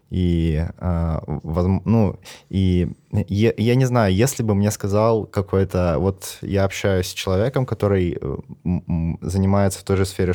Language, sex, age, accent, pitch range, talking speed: Russian, male, 20-39, native, 90-105 Hz, 130 wpm